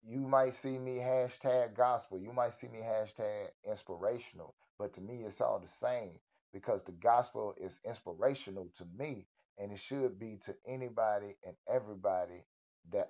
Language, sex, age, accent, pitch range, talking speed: English, male, 30-49, American, 95-125 Hz, 160 wpm